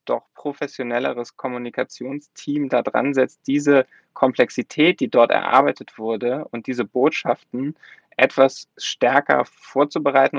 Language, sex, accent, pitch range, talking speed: German, male, German, 120-135 Hz, 105 wpm